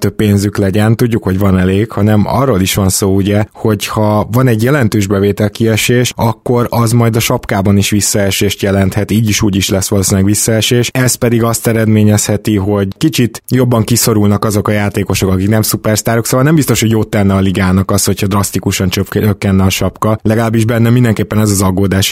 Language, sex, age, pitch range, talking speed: Hungarian, male, 20-39, 100-120 Hz, 185 wpm